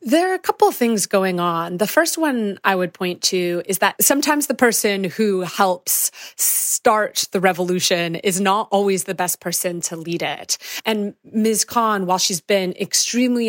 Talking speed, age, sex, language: 180 wpm, 30-49, female, English